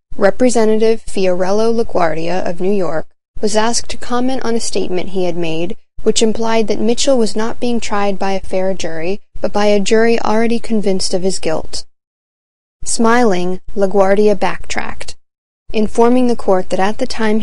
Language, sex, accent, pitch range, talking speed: English, female, American, 185-225 Hz, 160 wpm